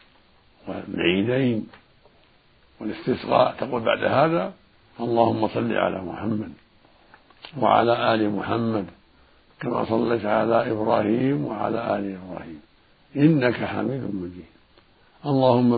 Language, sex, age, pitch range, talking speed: Arabic, male, 60-79, 110-140 Hz, 90 wpm